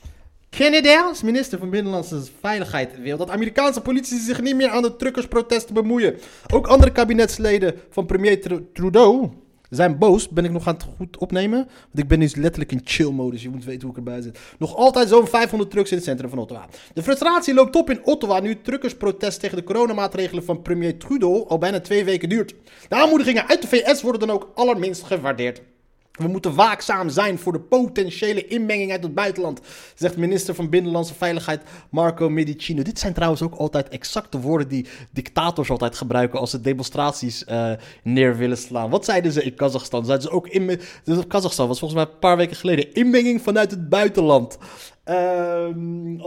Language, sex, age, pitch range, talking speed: Dutch, male, 30-49, 150-215 Hz, 190 wpm